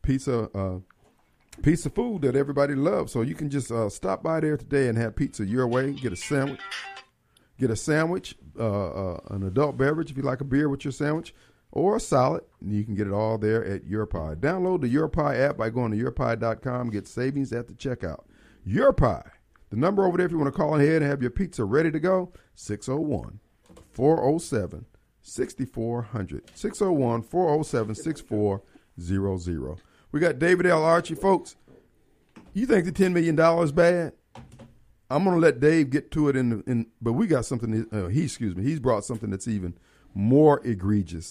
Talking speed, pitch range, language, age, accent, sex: 190 wpm, 110-170 Hz, English, 50-69, American, male